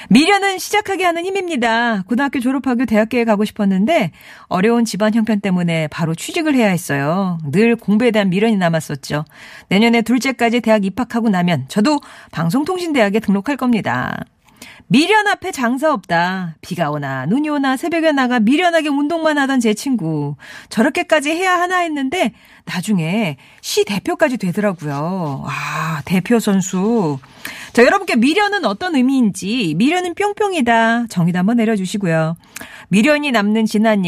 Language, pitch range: Korean, 190-290 Hz